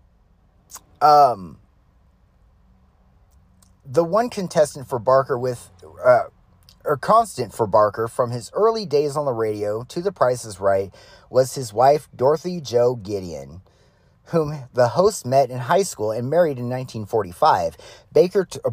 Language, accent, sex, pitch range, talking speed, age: English, American, male, 110-160 Hz, 130 wpm, 30-49